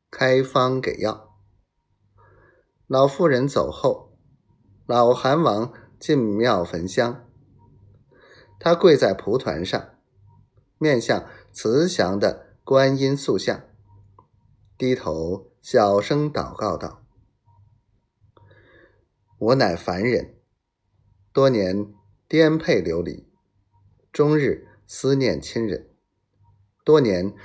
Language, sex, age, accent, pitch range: Chinese, male, 30-49, native, 100-125 Hz